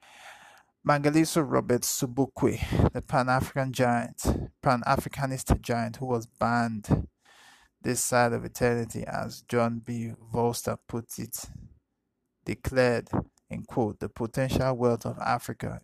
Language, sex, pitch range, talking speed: English, male, 115-125 Hz, 115 wpm